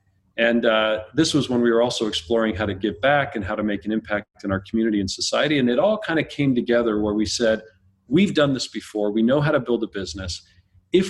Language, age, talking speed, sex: English, 40-59, 250 wpm, male